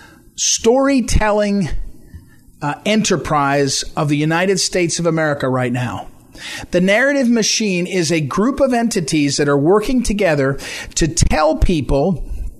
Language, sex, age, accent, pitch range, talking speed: English, male, 40-59, American, 165-220 Hz, 120 wpm